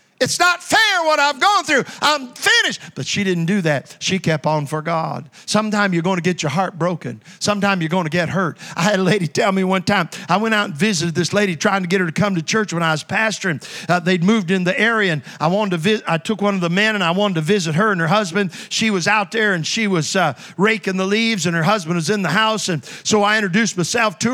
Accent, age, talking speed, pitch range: American, 50-69, 270 wpm, 170-215 Hz